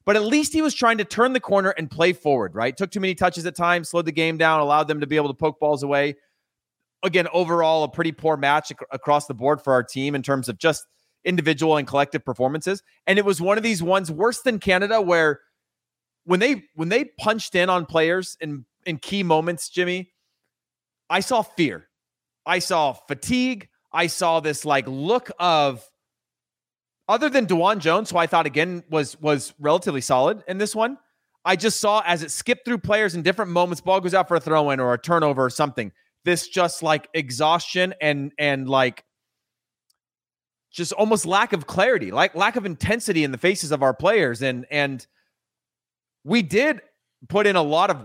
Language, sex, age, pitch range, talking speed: English, male, 30-49, 145-190 Hz, 195 wpm